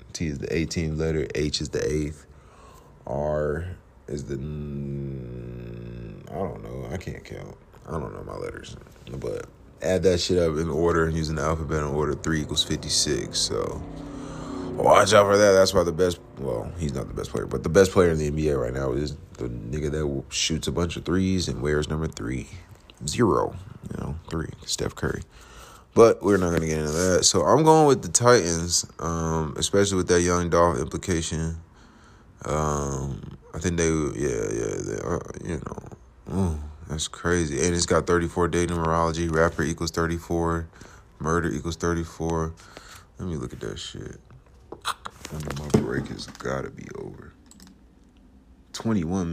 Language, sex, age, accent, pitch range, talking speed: English, male, 30-49, American, 75-90 Hz, 170 wpm